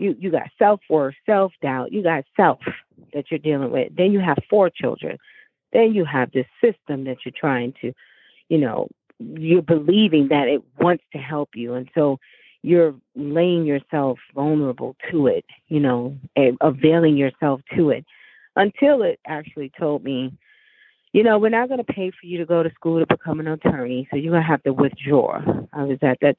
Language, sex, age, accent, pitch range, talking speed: English, female, 40-59, American, 145-195 Hz, 190 wpm